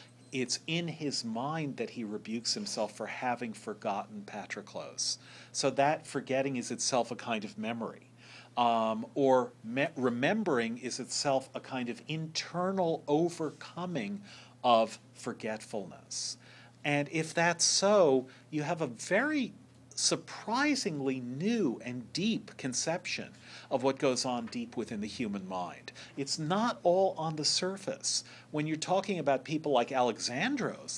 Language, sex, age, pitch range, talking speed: English, male, 40-59, 125-175 Hz, 135 wpm